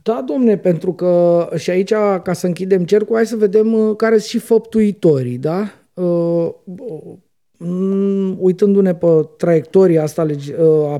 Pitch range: 145-200 Hz